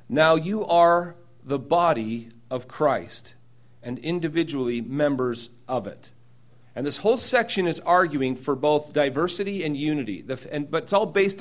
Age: 40-59